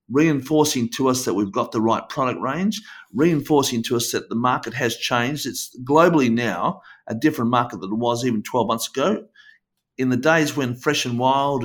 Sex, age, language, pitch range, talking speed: male, 50-69, English, 115-145 Hz, 195 wpm